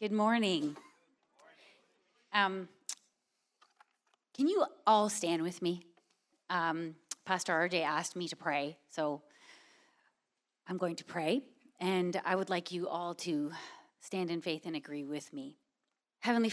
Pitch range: 185-260 Hz